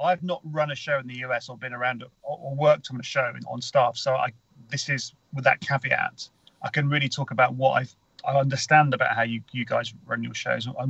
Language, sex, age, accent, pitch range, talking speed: English, male, 40-59, British, 125-150 Hz, 235 wpm